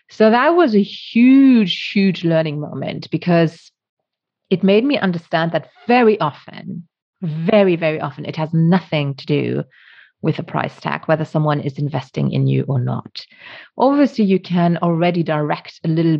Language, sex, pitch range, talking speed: English, female, 150-200 Hz, 160 wpm